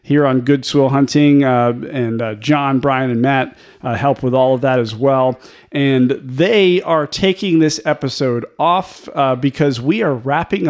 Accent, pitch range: American, 125-150 Hz